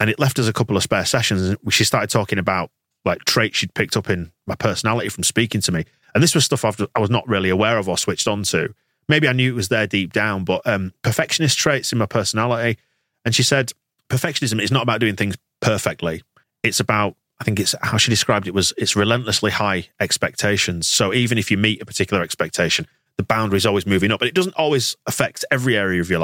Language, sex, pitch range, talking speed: English, male, 100-120 Hz, 235 wpm